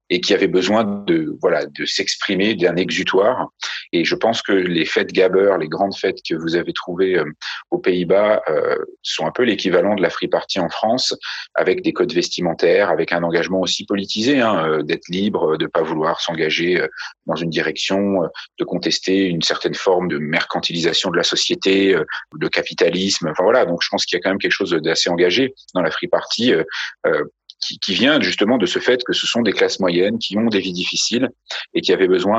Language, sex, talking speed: French, male, 210 wpm